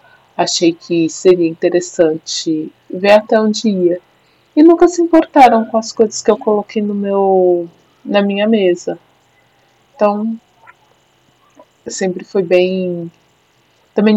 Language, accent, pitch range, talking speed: Portuguese, Brazilian, 160-205 Hz, 110 wpm